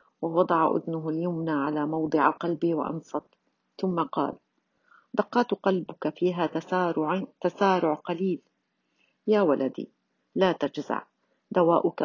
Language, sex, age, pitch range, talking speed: Arabic, female, 50-69, 160-195 Hz, 95 wpm